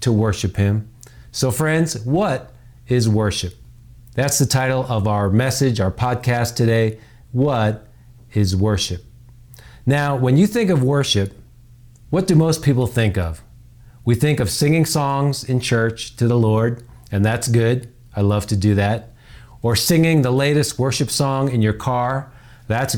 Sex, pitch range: male, 115-135 Hz